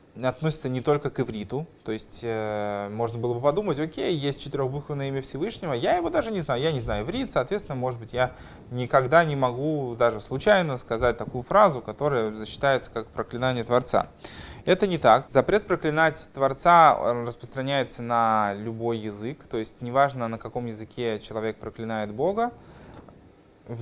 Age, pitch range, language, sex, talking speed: 20-39, 110-140 Hz, Russian, male, 160 wpm